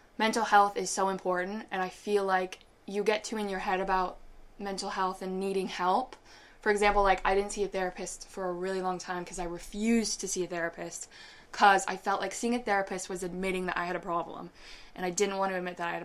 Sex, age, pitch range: female, 20-39, 180-205 Hz